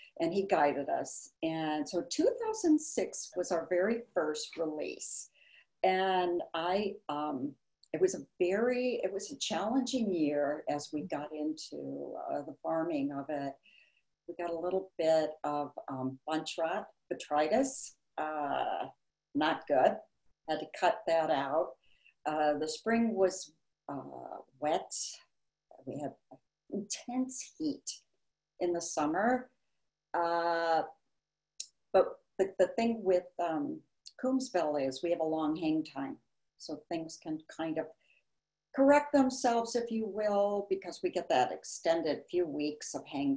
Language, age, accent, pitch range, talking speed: English, 60-79, American, 150-215 Hz, 135 wpm